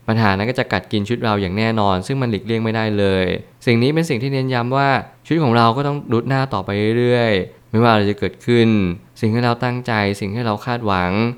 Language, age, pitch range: Thai, 20-39, 100-120 Hz